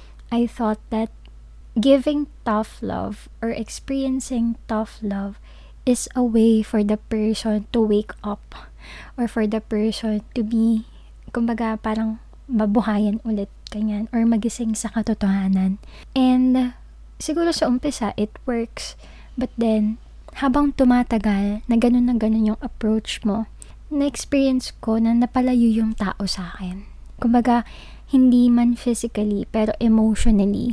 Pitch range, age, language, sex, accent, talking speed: 215-245 Hz, 20-39, Filipino, female, native, 125 wpm